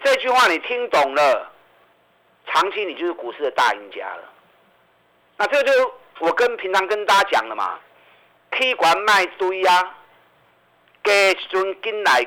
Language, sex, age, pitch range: Chinese, male, 50-69, 165-230 Hz